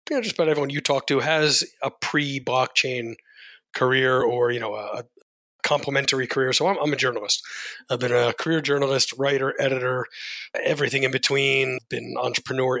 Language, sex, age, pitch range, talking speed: English, male, 30-49, 130-160 Hz, 165 wpm